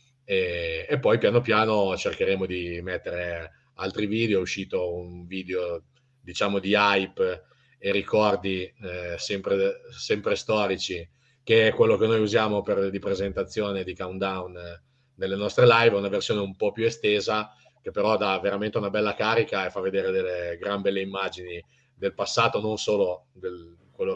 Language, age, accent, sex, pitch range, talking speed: Italian, 30-49, native, male, 95-145 Hz, 155 wpm